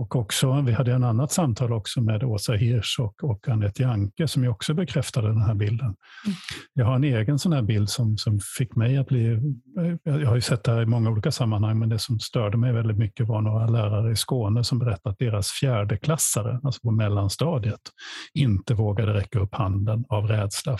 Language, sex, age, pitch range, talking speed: Swedish, male, 50-69, 110-140 Hz, 210 wpm